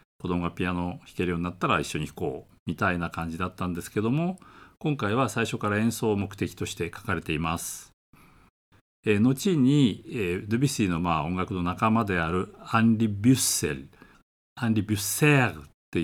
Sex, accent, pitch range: male, native, 85-120 Hz